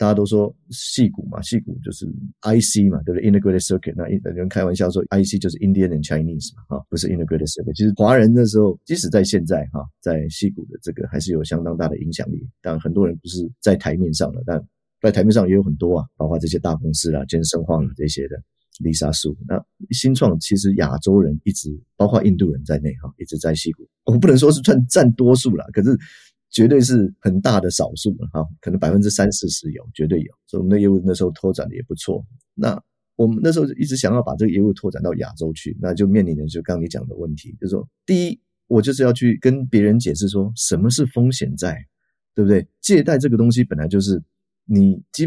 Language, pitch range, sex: Chinese, 80-110 Hz, male